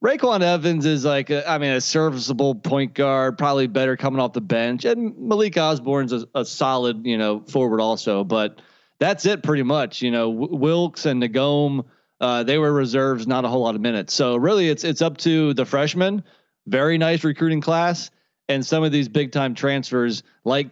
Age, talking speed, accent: 30-49, 195 wpm, American